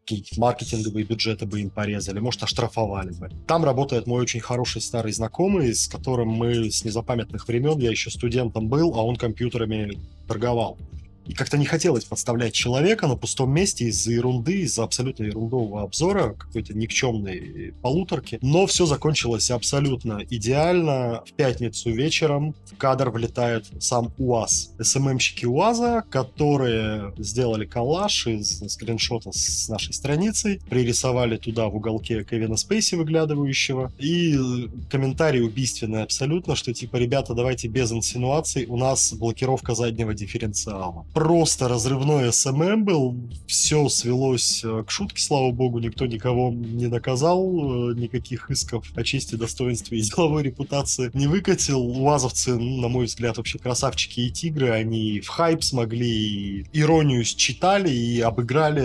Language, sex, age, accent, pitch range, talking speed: Russian, male, 20-39, native, 115-135 Hz, 135 wpm